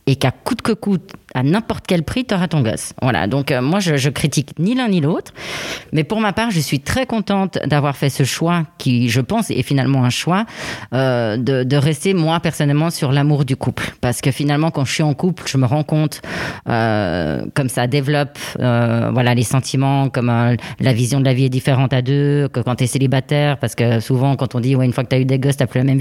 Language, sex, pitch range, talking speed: French, female, 125-155 Hz, 240 wpm